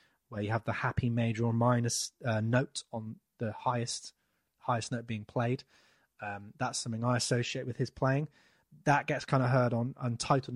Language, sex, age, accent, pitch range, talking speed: English, male, 20-39, British, 115-135 Hz, 180 wpm